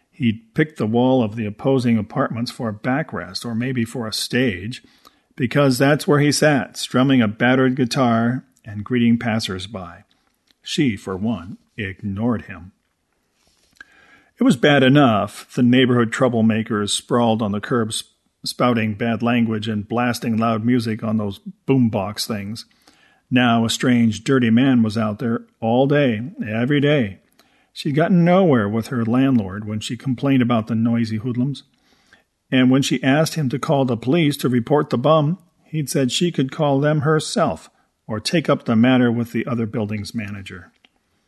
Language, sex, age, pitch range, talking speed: English, male, 50-69, 110-135 Hz, 160 wpm